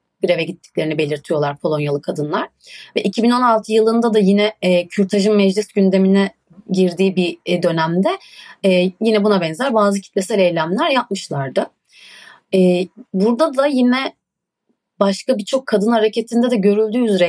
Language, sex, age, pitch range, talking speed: Turkish, female, 30-49, 190-225 Hz, 130 wpm